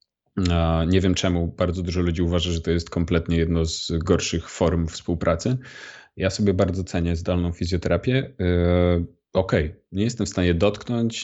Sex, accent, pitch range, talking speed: male, native, 90-115 Hz, 160 wpm